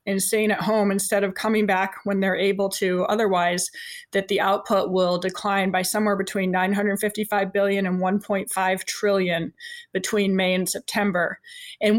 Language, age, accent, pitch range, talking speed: English, 20-39, American, 190-215 Hz, 155 wpm